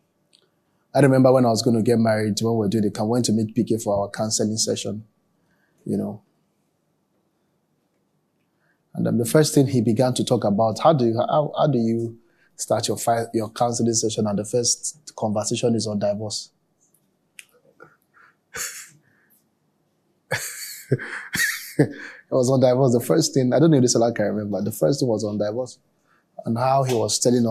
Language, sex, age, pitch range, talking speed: English, male, 20-39, 110-150 Hz, 180 wpm